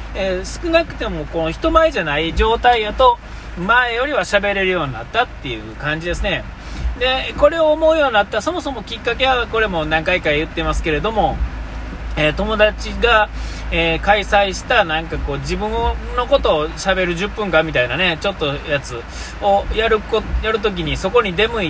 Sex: male